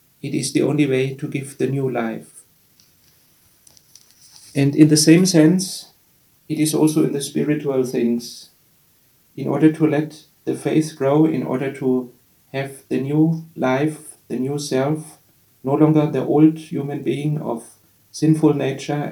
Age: 40-59